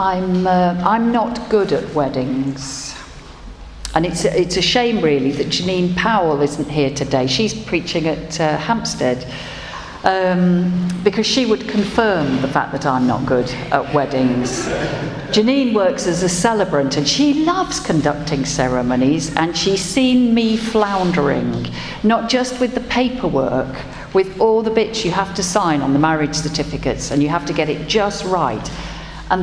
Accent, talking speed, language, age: British, 160 wpm, English, 50-69